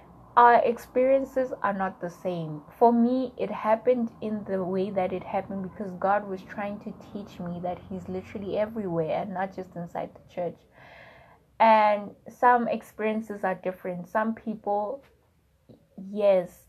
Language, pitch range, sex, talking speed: English, 180-220 Hz, female, 145 wpm